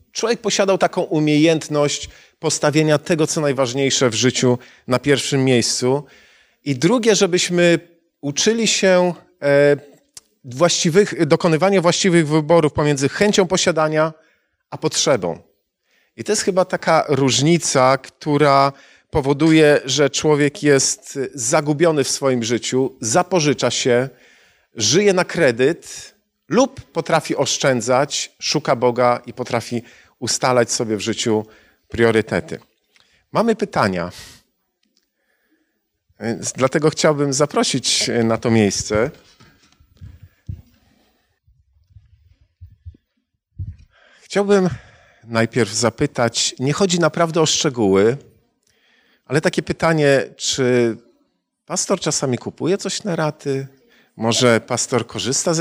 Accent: native